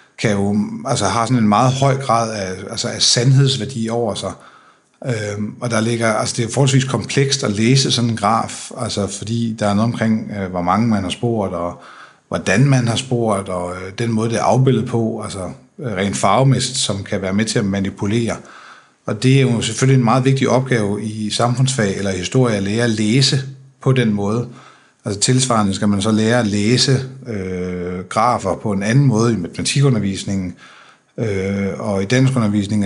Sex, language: male, Danish